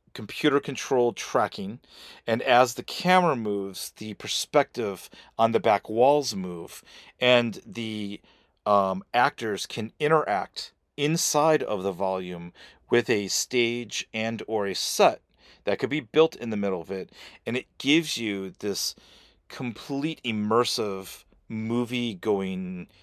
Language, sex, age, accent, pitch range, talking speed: English, male, 40-59, American, 95-120 Hz, 125 wpm